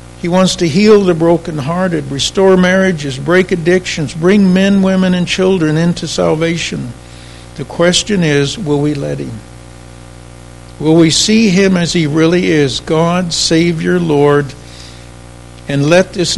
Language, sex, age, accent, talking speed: English, male, 60-79, American, 140 wpm